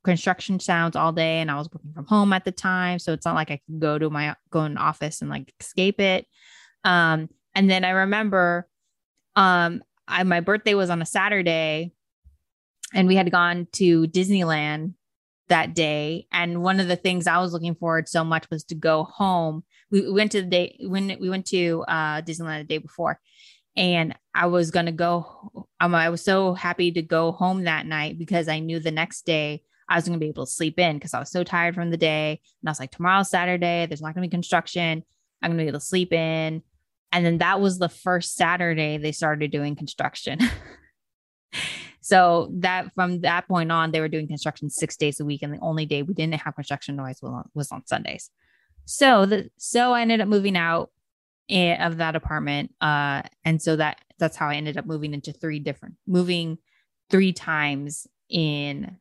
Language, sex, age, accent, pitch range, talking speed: English, female, 20-39, American, 155-185 Hz, 205 wpm